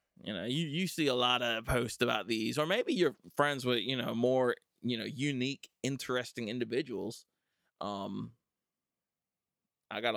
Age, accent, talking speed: 20-39, American, 160 wpm